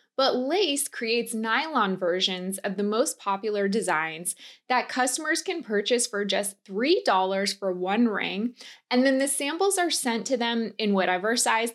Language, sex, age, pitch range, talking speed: English, female, 20-39, 195-270 Hz, 160 wpm